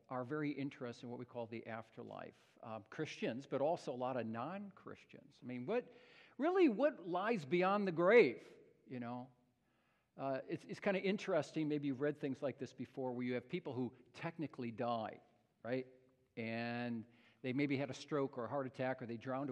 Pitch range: 125-150 Hz